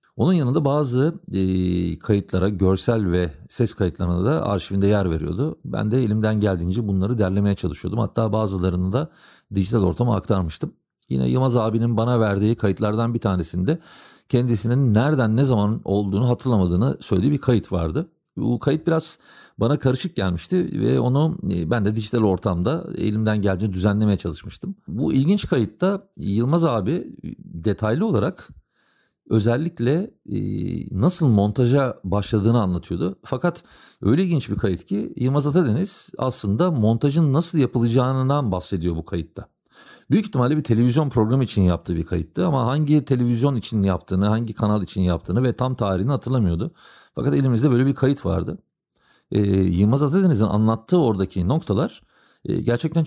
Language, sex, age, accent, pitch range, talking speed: Turkish, male, 50-69, native, 95-140 Hz, 140 wpm